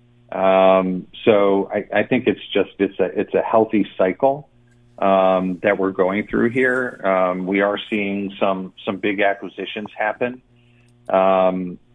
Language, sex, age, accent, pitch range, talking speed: English, male, 40-59, American, 95-115 Hz, 145 wpm